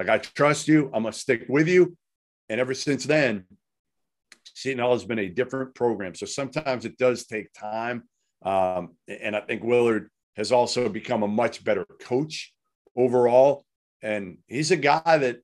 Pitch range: 110-135 Hz